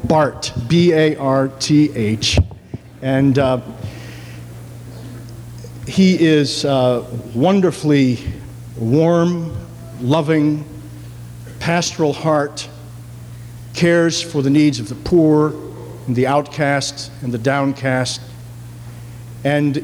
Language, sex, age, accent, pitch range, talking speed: English, male, 50-69, American, 120-150 Hz, 80 wpm